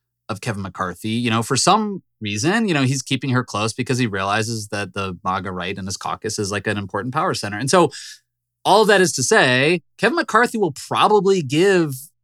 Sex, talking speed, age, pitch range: male, 210 wpm, 20-39, 100-135 Hz